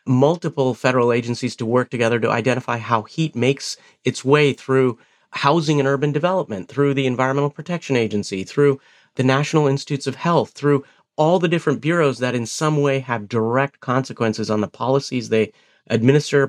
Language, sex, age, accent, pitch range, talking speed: English, male, 40-59, American, 115-140 Hz, 165 wpm